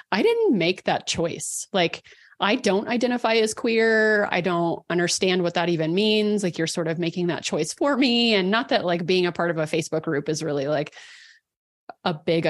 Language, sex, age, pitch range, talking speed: English, female, 30-49, 170-220 Hz, 205 wpm